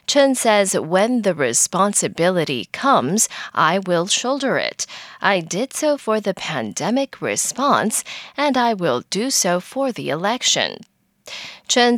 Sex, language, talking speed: female, English, 130 wpm